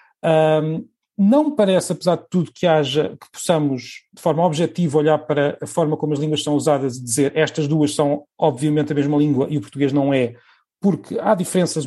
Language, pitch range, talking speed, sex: Portuguese, 150-190 Hz, 195 wpm, male